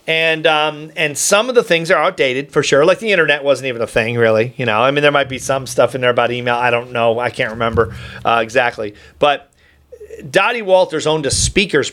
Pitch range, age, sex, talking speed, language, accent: 135-160 Hz, 40-59, male, 230 wpm, English, American